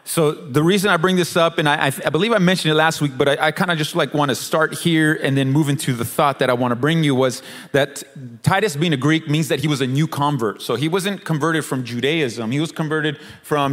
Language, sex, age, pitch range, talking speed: English, male, 30-49, 140-170 Hz, 270 wpm